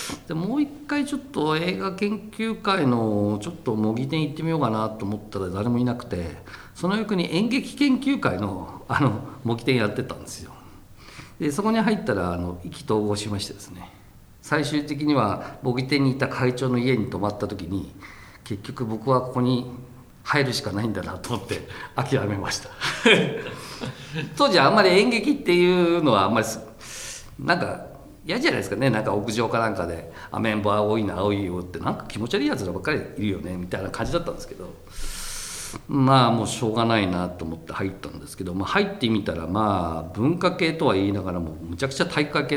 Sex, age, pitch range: male, 50-69, 100-145 Hz